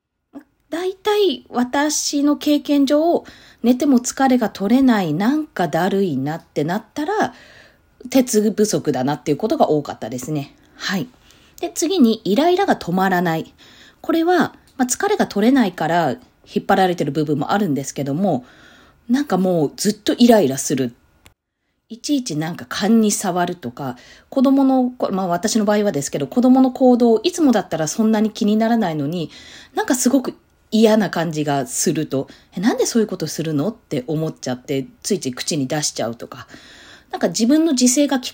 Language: Japanese